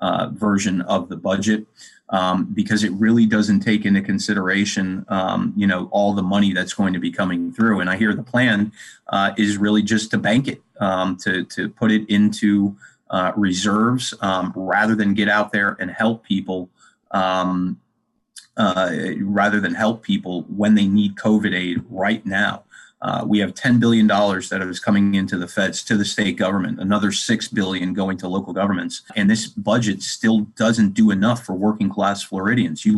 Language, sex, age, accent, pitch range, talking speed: English, male, 30-49, American, 95-110 Hz, 185 wpm